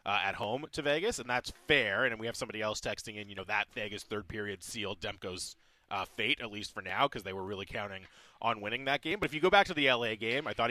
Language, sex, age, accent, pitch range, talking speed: English, male, 30-49, American, 105-140 Hz, 280 wpm